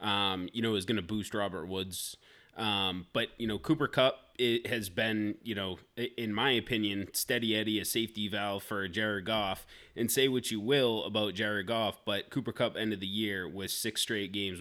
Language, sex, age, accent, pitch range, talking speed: English, male, 20-39, American, 95-115 Hz, 205 wpm